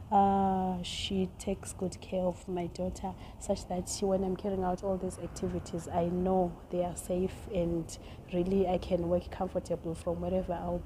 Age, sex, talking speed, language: 30-49, female, 175 wpm, English